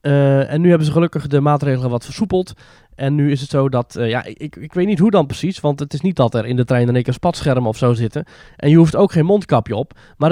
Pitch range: 125-170 Hz